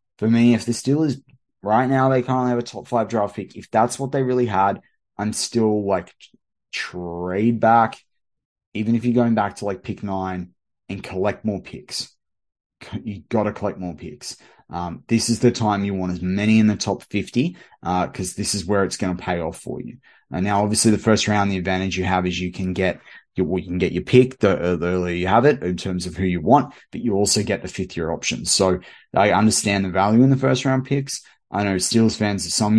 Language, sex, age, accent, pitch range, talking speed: English, male, 20-39, Australian, 95-120 Hz, 225 wpm